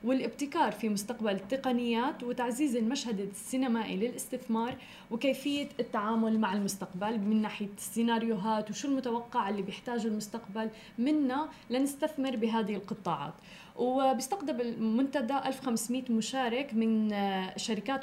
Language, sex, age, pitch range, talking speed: Arabic, female, 20-39, 210-250 Hz, 100 wpm